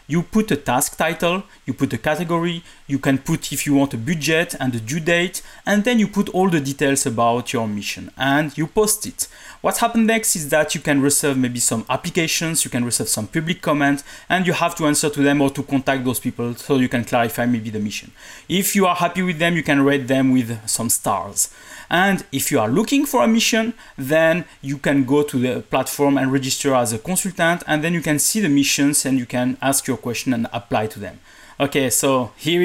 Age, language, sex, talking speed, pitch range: 30-49, English, male, 230 wpm, 135-180 Hz